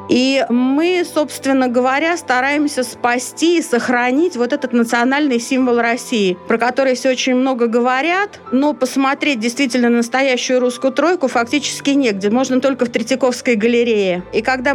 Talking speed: 140 wpm